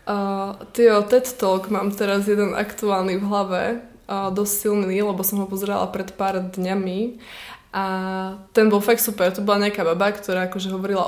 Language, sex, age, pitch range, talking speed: Czech, female, 20-39, 185-210 Hz, 170 wpm